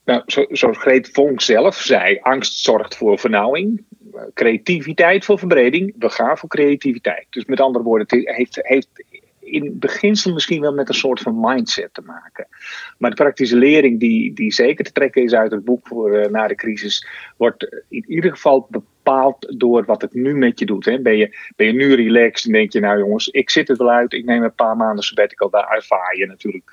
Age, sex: 40-59, male